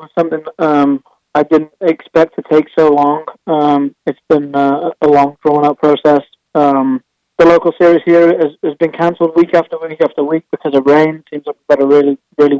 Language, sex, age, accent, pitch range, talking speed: English, male, 20-39, British, 150-165 Hz, 195 wpm